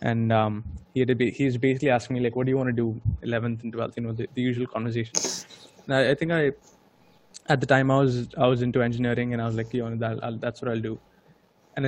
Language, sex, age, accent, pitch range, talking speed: English, male, 20-39, Indian, 120-135 Hz, 275 wpm